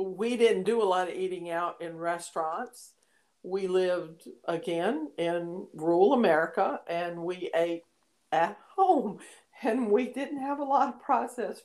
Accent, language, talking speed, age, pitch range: American, English, 150 wpm, 50-69, 170-260 Hz